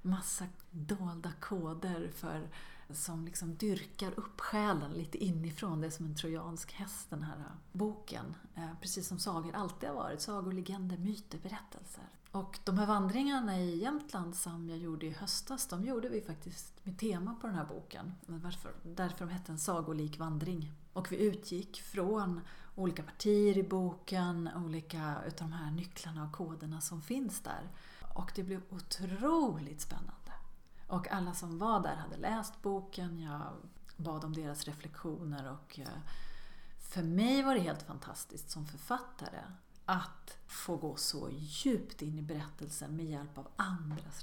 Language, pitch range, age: Swedish, 155-190 Hz, 30-49